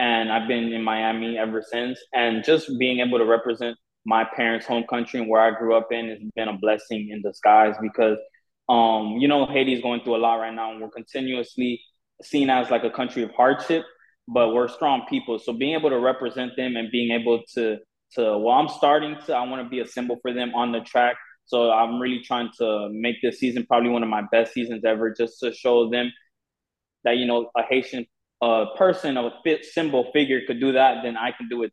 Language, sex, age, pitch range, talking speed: English, male, 20-39, 115-130 Hz, 220 wpm